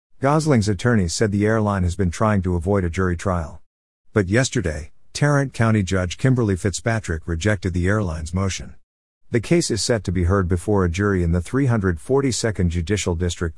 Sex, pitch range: male, 90-115 Hz